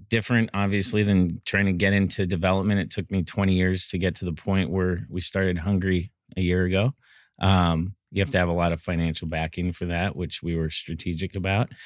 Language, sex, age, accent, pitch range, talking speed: English, male, 30-49, American, 90-100 Hz, 215 wpm